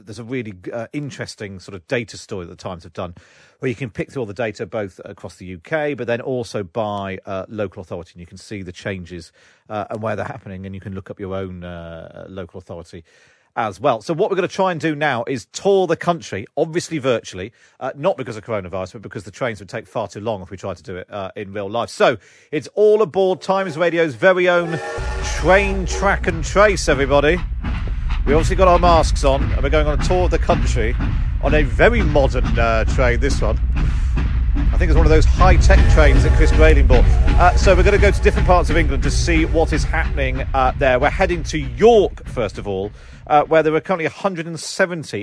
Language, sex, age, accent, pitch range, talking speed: English, male, 40-59, British, 95-145 Hz, 230 wpm